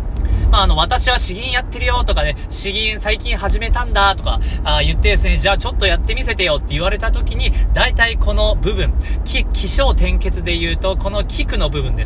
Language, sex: Japanese, male